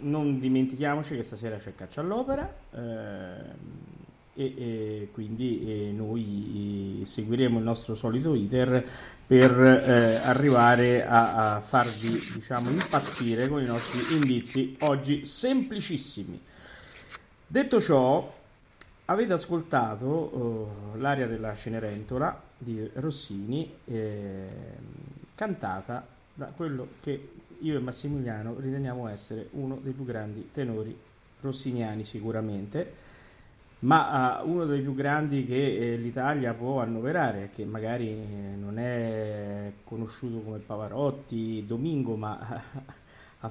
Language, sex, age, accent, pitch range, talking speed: Italian, male, 30-49, native, 110-140 Hz, 110 wpm